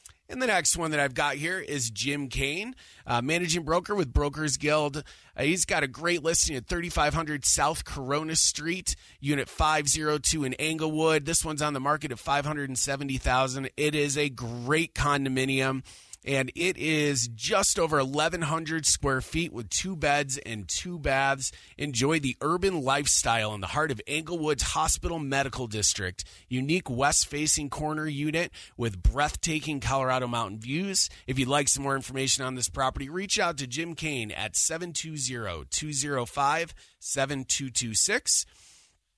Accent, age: American, 30-49